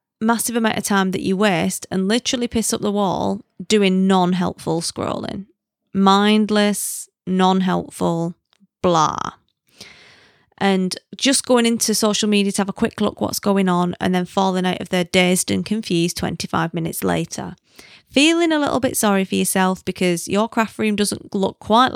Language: English